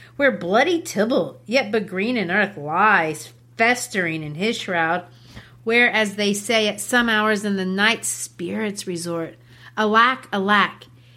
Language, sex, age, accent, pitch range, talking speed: English, female, 30-49, American, 180-240 Hz, 145 wpm